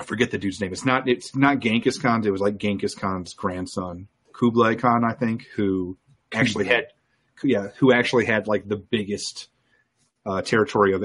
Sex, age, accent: male, 30-49, American